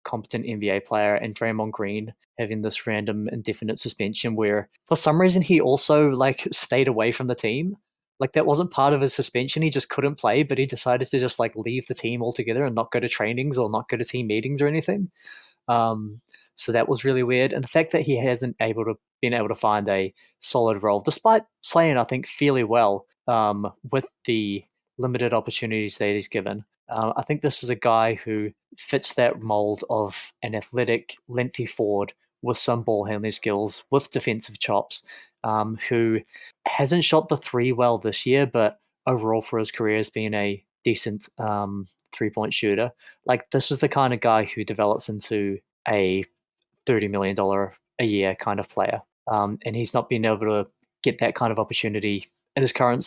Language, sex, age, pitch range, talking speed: English, male, 20-39, 105-130 Hz, 190 wpm